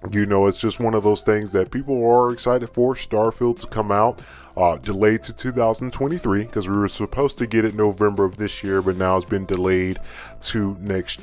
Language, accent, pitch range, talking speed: English, American, 100-125 Hz, 210 wpm